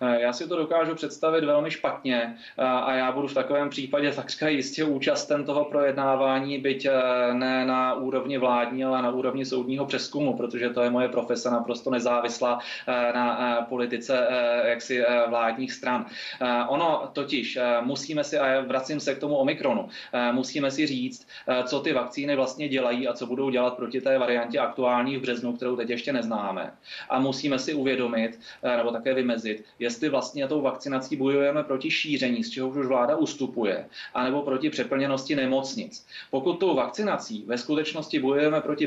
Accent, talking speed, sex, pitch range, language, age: native, 160 wpm, male, 120-140 Hz, Czech, 20-39